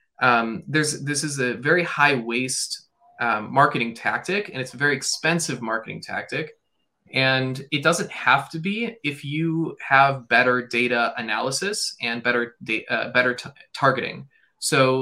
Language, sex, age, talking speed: English, male, 20-39, 150 wpm